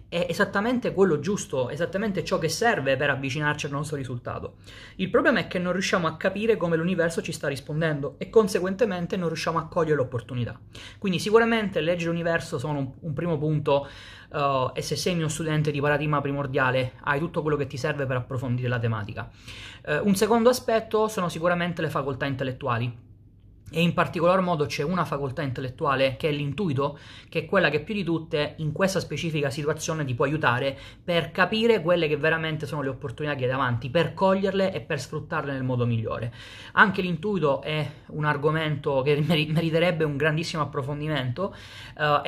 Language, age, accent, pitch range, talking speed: Italian, 30-49, native, 135-170 Hz, 175 wpm